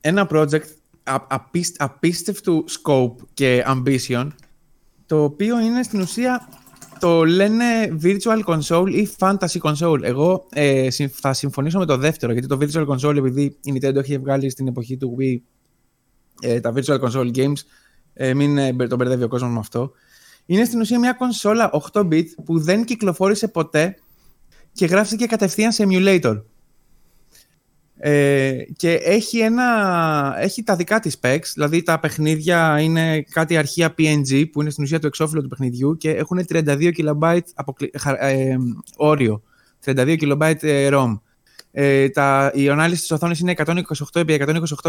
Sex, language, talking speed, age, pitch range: male, Greek, 140 wpm, 20-39, 135-180 Hz